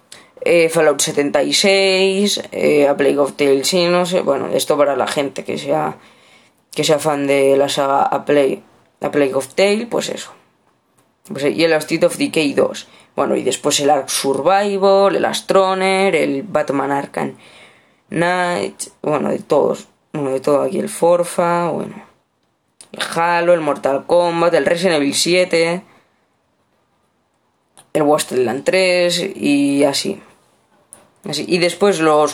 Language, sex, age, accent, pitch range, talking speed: Spanish, female, 20-39, Spanish, 150-200 Hz, 150 wpm